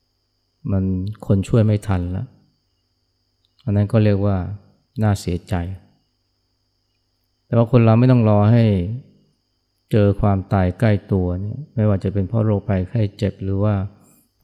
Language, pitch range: Thai, 95-110 Hz